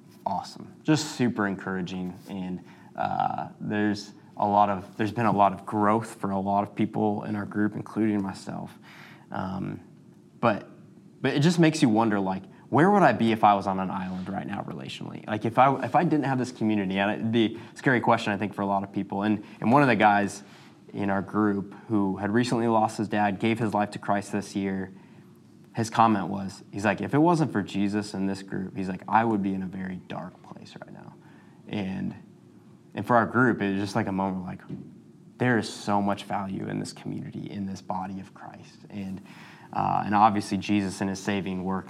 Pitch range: 95-115 Hz